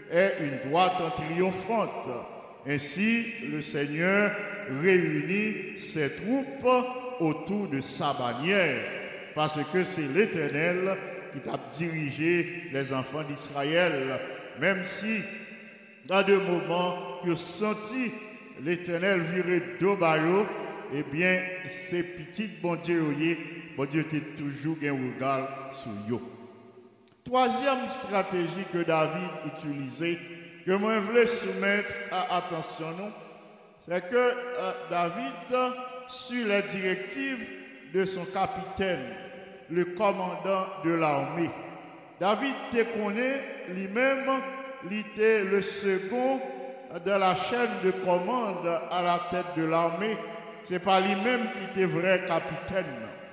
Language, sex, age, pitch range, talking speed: English, male, 60-79, 165-205 Hz, 110 wpm